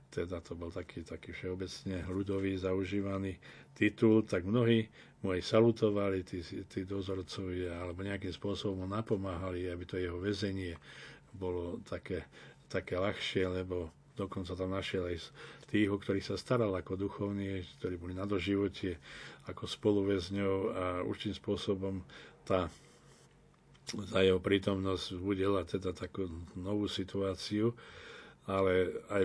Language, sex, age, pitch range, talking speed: Slovak, male, 40-59, 90-100 Hz, 125 wpm